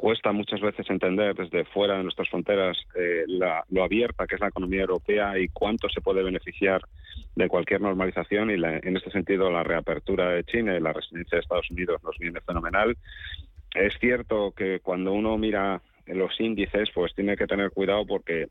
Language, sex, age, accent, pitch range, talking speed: Spanish, male, 40-59, Spanish, 90-105 Hz, 190 wpm